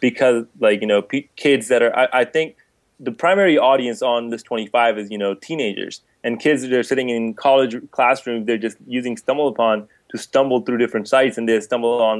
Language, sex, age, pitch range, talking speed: English, male, 20-39, 115-135 Hz, 210 wpm